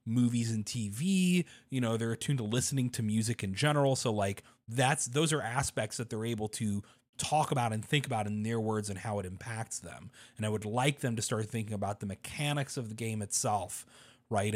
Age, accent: 30-49, American